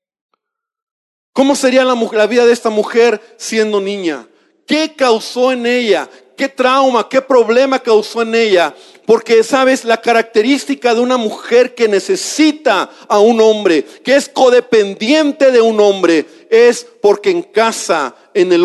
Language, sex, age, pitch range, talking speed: Spanish, male, 40-59, 215-275 Hz, 145 wpm